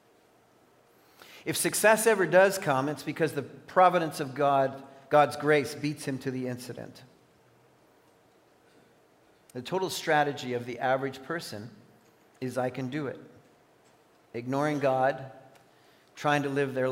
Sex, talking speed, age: male, 130 wpm, 50-69